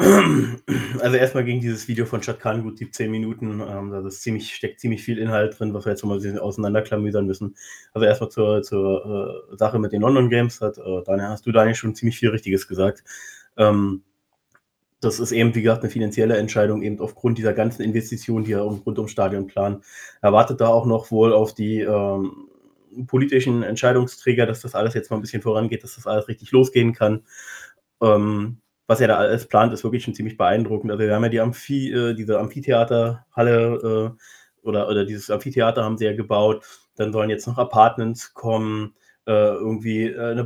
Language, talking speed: German, 195 wpm